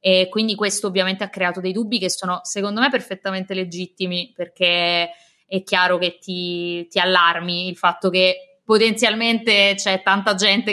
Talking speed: 155 wpm